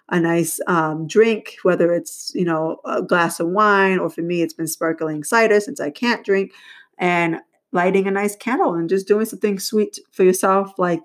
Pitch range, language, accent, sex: 180-225 Hz, English, American, female